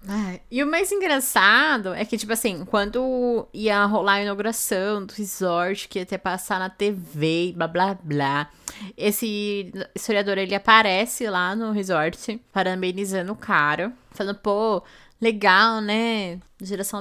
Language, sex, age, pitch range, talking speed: Portuguese, female, 10-29, 200-245 Hz, 140 wpm